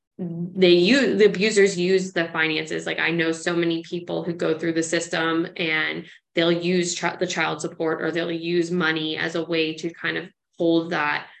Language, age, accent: English, 20-39, American